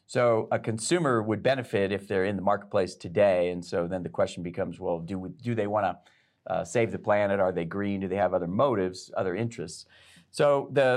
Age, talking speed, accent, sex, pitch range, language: 40-59, 215 wpm, American, male, 100-120 Hz, English